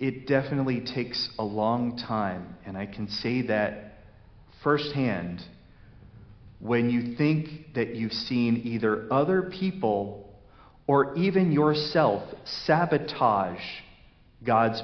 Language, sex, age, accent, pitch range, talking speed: English, male, 40-59, American, 110-150 Hz, 105 wpm